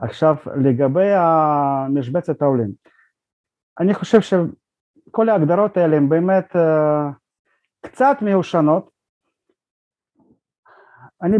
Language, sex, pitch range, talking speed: Hebrew, male, 140-190 Hz, 75 wpm